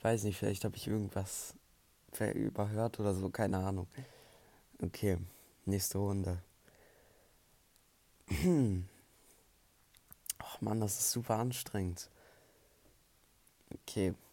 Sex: male